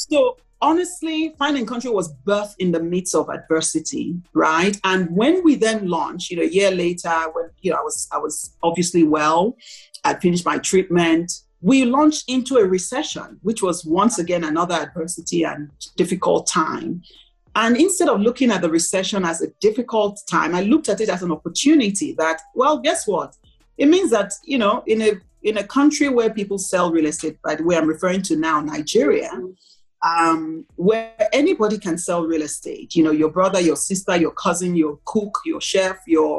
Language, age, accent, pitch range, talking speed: English, 40-59, Nigerian, 165-230 Hz, 190 wpm